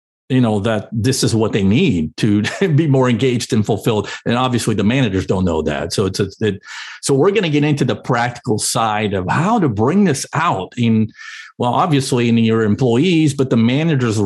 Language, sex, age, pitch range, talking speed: English, male, 50-69, 110-140 Hz, 205 wpm